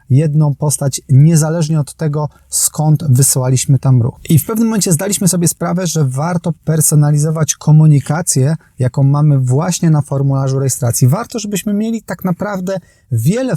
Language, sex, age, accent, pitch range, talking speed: Polish, male, 30-49, native, 130-160 Hz, 140 wpm